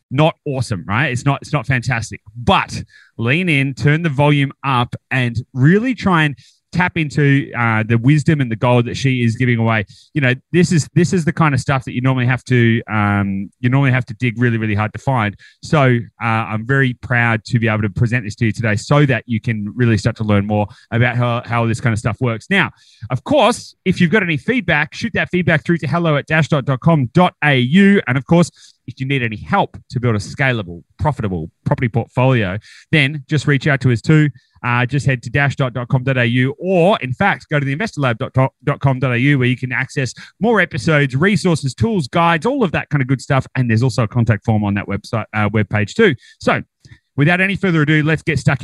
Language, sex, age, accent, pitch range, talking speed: English, male, 30-49, Australian, 115-150 Hz, 220 wpm